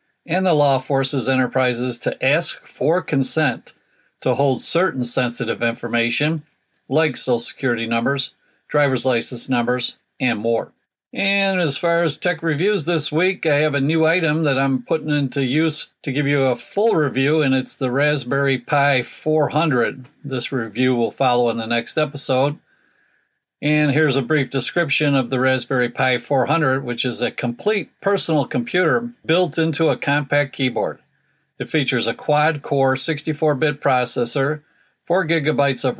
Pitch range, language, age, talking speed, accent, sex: 130-155 Hz, English, 50-69, 150 wpm, American, male